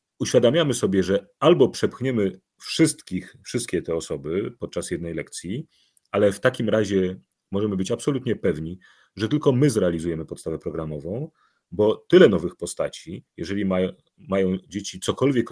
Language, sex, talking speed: Polish, male, 135 wpm